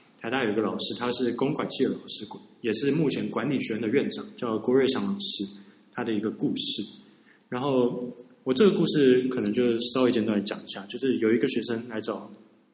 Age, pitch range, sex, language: 20-39, 115-135 Hz, male, Chinese